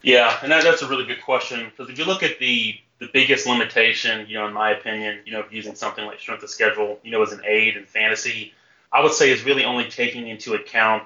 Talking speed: 250 wpm